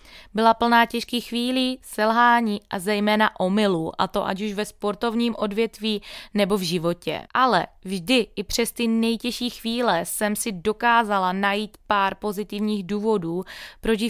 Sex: female